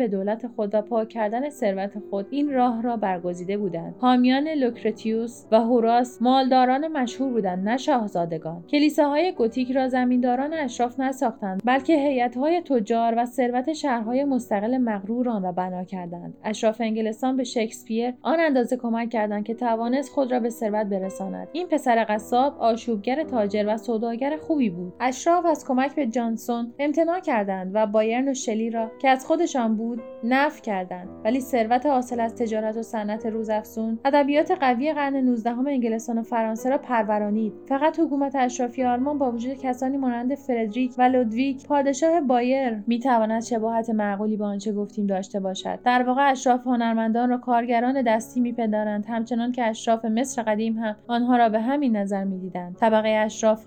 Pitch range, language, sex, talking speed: 220-260 Hz, Persian, female, 160 wpm